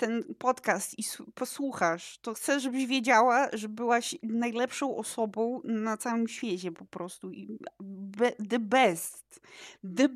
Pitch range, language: 210-255 Hz, Polish